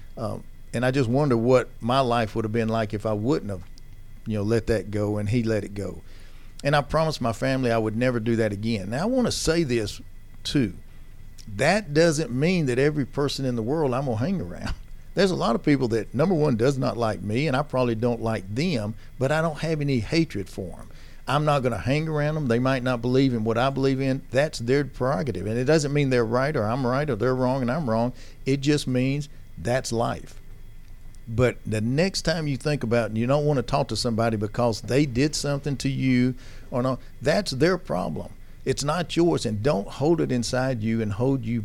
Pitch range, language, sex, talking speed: 110-140 Hz, English, male, 230 wpm